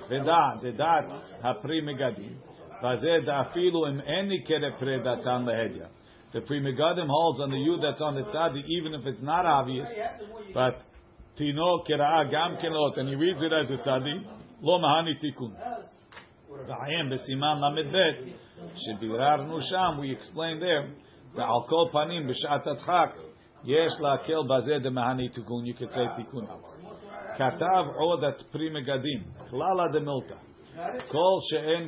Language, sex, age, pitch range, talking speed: English, male, 50-69, 125-165 Hz, 135 wpm